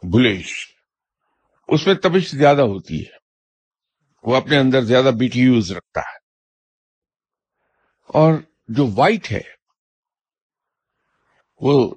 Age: 60-79